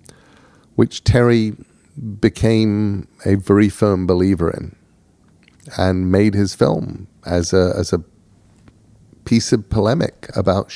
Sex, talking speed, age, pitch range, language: male, 110 wpm, 40-59, 85-105 Hz, English